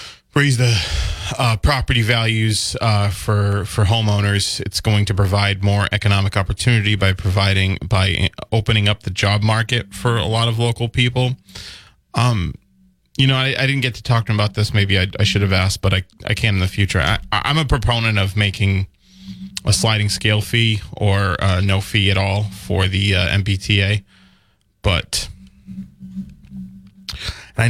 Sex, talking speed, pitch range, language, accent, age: male, 170 wpm, 95-115 Hz, English, American, 20-39